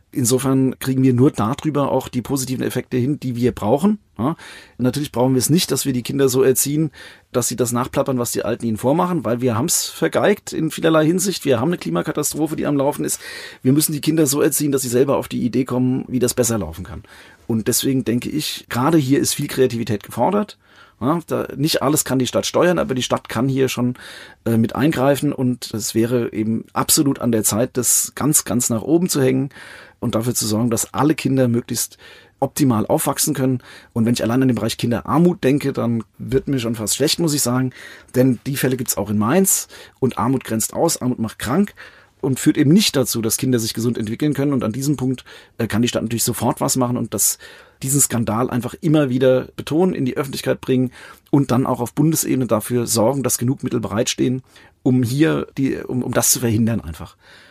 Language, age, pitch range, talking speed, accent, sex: German, 40-59, 115-140 Hz, 215 wpm, German, male